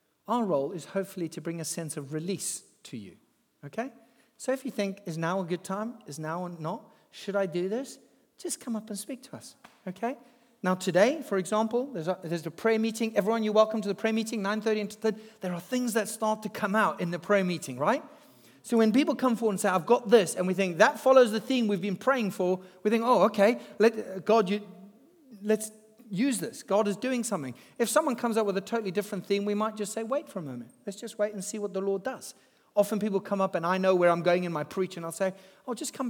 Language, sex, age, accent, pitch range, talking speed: English, male, 40-59, British, 185-225 Hz, 250 wpm